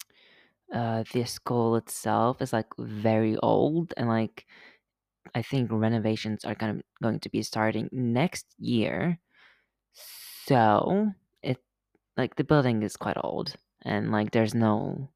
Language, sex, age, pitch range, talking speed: English, female, 20-39, 110-150 Hz, 135 wpm